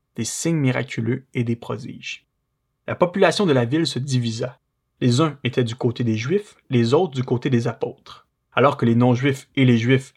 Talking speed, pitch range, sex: 195 wpm, 120-145 Hz, male